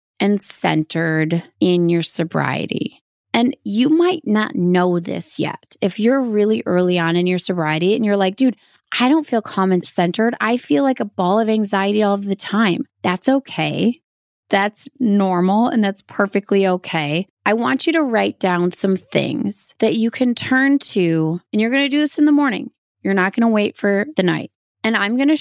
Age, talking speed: 20-39, 195 wpm